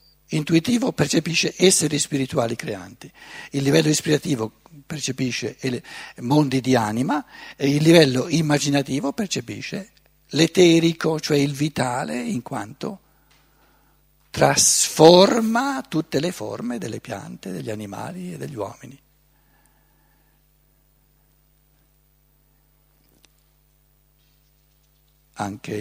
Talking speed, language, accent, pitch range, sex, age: 80 wpm, Italian, native, 110-150 Hz, male, 60-79